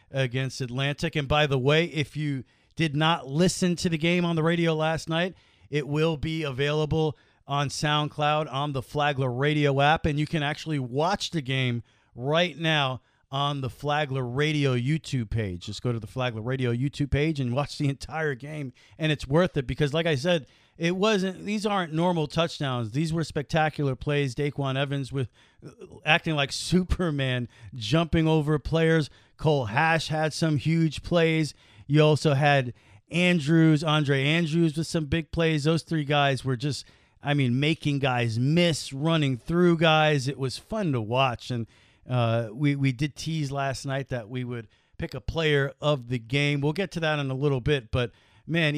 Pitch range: 130-160 Hz